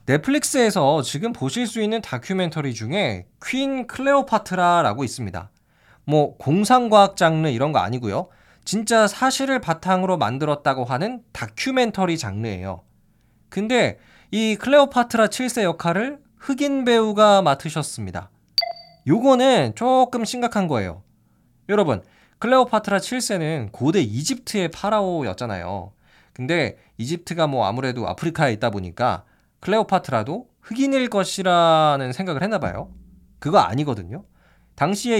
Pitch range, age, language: 130-220 Hz, 20-39, Korean